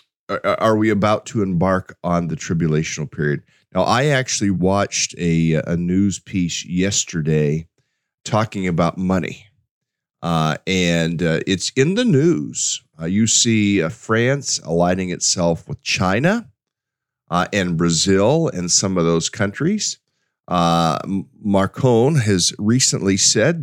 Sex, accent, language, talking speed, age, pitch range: male, American, English, 125 wpm, 40-59, 85-120 Hz